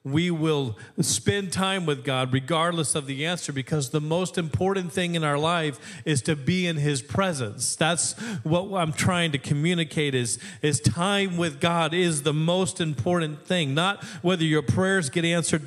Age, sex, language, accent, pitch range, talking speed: 40-59, male, English, American, 155-195 Hz, 175 wpm